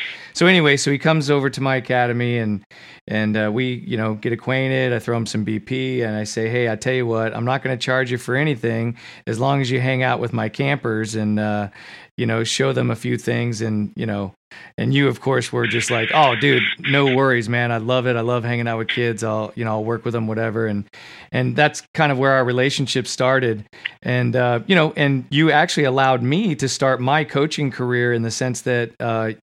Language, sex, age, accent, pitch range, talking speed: English, male, 40-59, American, 115-140 Hz, 235 wpm